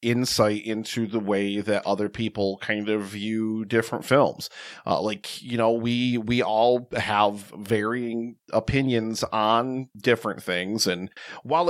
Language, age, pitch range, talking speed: English, 40-59, 110-140 Hz, 140 wpm